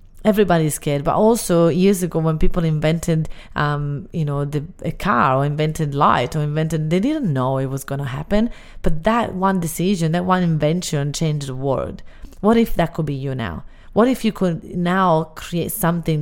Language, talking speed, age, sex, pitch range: English, 190 wpm, 30-49, female, 145-180 Hz